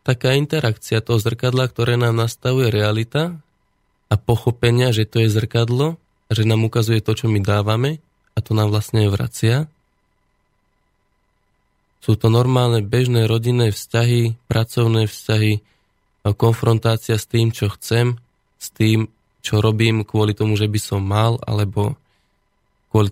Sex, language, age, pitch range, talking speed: male, Slovak, 20-39, 105-120 Hz, 130 wpm